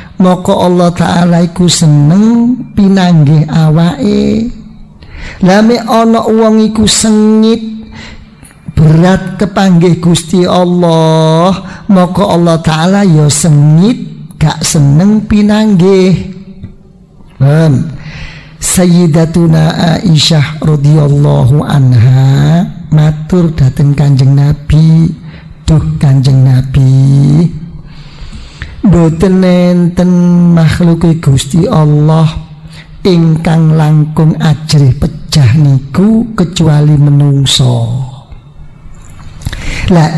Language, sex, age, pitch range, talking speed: Indonesian, male, 50-69, 155-195 Hz, 70 wpm